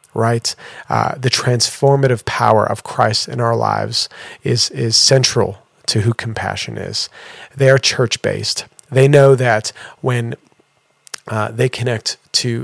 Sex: male